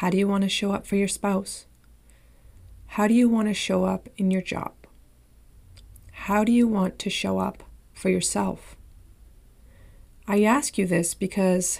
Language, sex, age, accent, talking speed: English, female, 30-49, American, 175 wpm